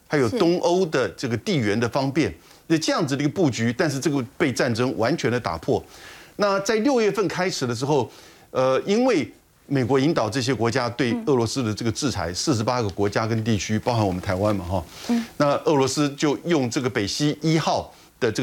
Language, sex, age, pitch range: Chinese, male, 50-69, 120-170 Hz